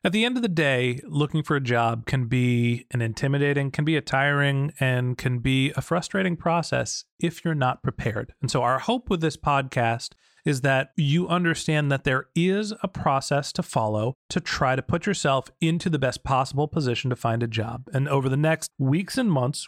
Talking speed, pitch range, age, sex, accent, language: 205 wpm, 135-170 Hz, 30-49, male, American, English